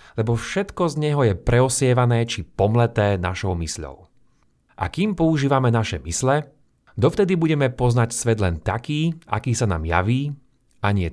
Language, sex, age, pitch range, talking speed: Slovak, male, 30-49, 100-140 Hz, 145 wpm